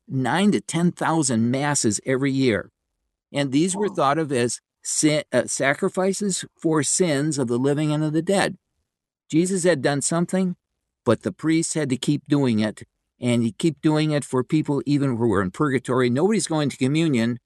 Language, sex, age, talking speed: English, male, 60-79, 180 wpm